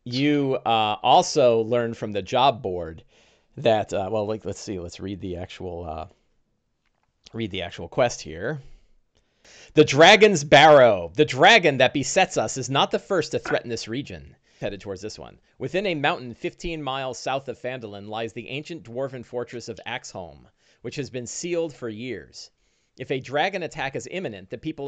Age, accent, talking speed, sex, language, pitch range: 40-59, American, 175 wpm, male, English, 100-140 Hz